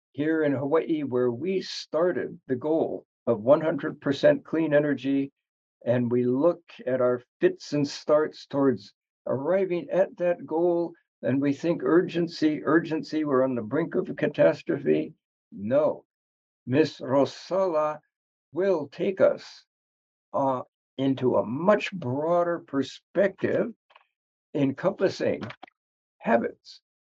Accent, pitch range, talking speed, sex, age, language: American, 130-165 Hz, 115 wpm, male, 60-79, English